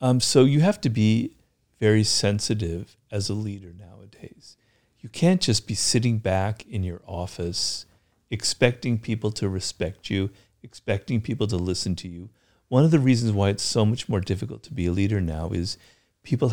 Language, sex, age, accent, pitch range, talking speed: English, male, 50-69, American, 95-120 Hz, 180 wpm